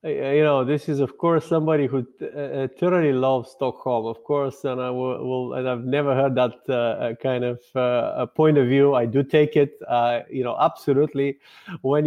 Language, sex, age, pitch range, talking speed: English, male, 30-49, 120-150 Hz, 200 wpm